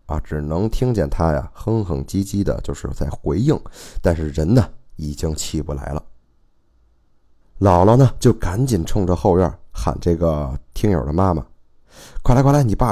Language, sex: Chinese, male